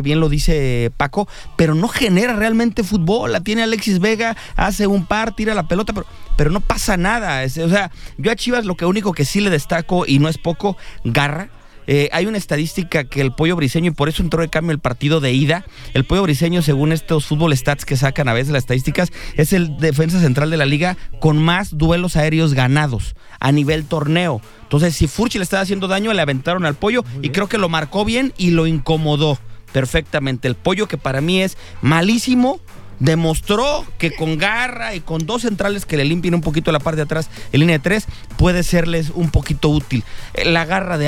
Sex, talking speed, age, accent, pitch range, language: male, 210 wpm, 30-49, Mexican, 145-190 Hz, English